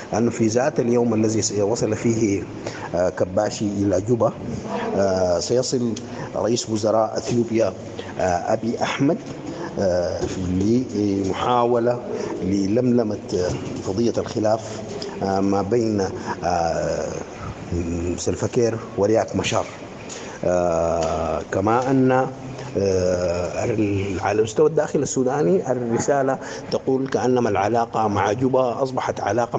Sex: male